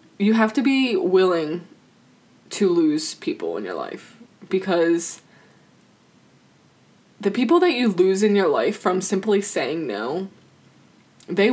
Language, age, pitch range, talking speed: English, 20-39, 175-215 Hz, 130 wpm